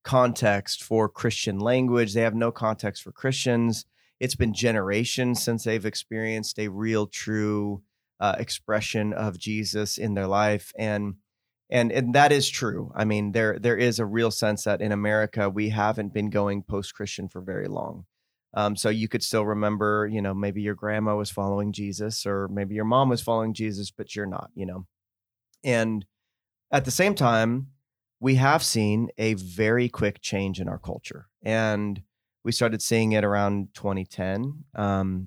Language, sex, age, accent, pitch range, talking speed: English, male, 30-49, American, 100-115 Hz, 170 wpm